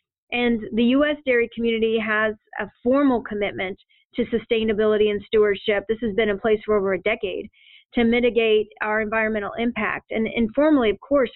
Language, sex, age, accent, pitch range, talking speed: English, female, 40-59, American, 215-245 Hz, 165 wpm